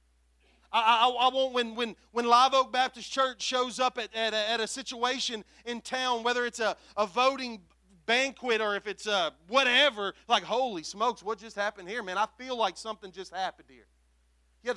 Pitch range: 195-275 Hz